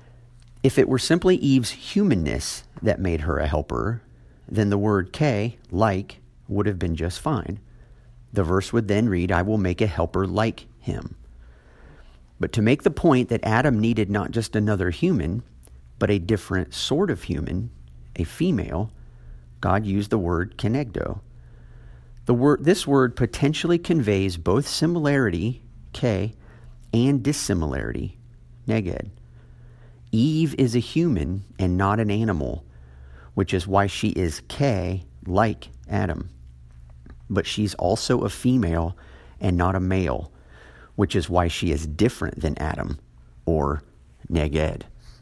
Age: 50-69